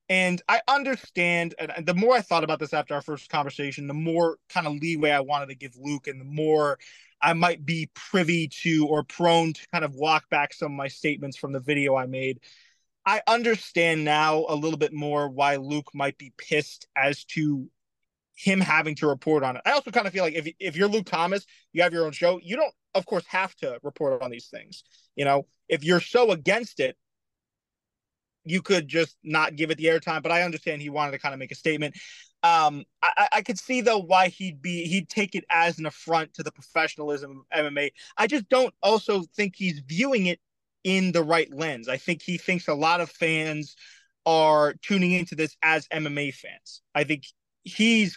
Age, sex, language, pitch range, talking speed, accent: 20-39, male, English, 150-180 Hz, 210 wpm, American